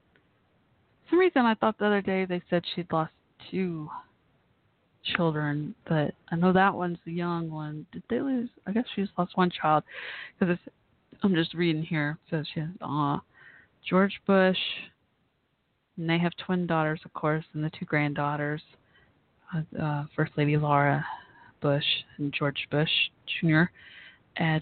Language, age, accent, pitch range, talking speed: English, 20-39, American, 155-175 Hz, 160 wpm